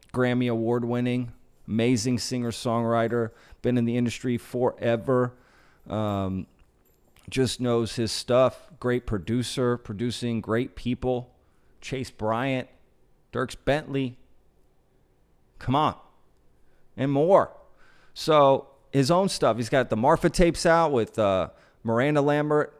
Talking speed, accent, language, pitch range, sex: 110 wpm, American, English, 105-130 Hz, male